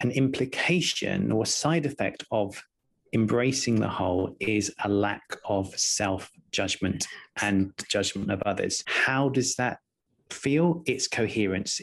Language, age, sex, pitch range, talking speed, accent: English, 30-49, male, 105-140 Hz, 125 wpm, British